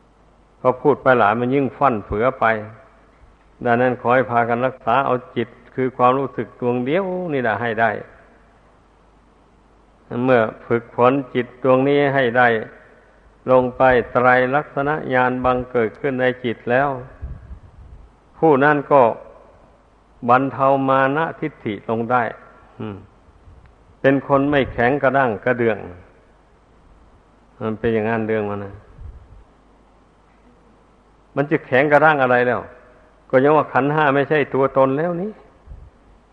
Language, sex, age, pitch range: Thai, male, 60-79, 115-140 Hz